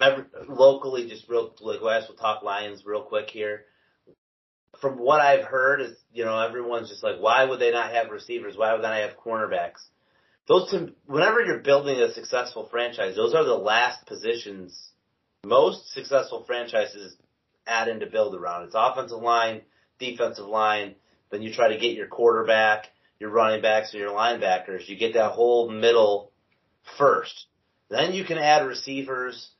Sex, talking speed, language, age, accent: male, 170 wpm, English, 30-49, American